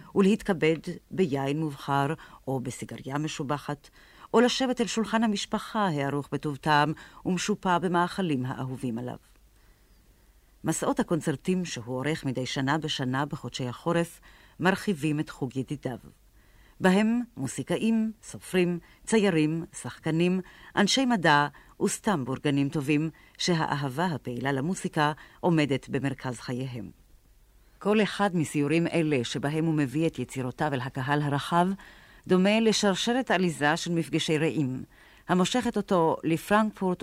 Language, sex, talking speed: Hebrew, female, 110 wpm